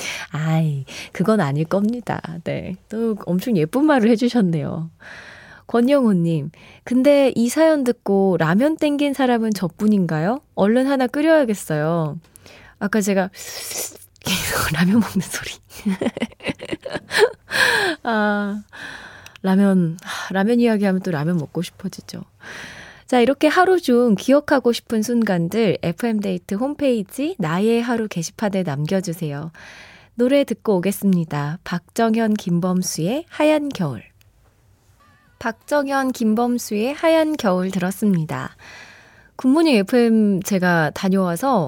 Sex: female